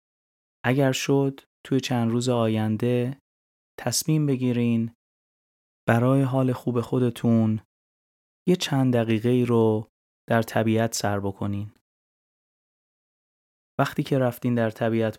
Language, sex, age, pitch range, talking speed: Persian, male, 20-39, 110-130 Hz, 105 wpm